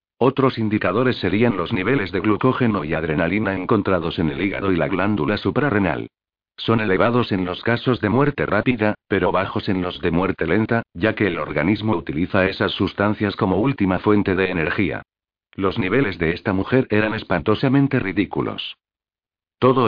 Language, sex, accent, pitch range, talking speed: Spanish, male, Spanish, 95-115 Hz, 160 wpm